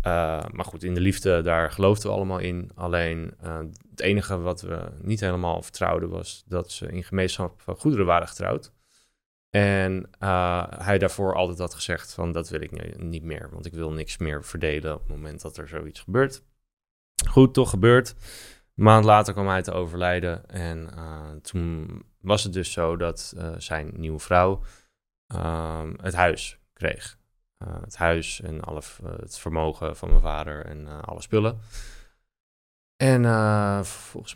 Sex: male